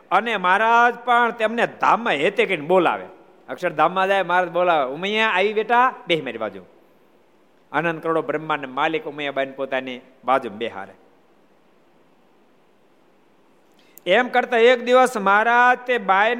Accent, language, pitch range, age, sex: native, Gujarati, 135-215 Hz, 50-69, male